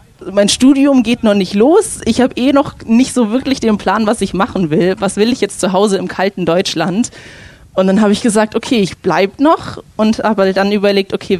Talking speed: 220 wpm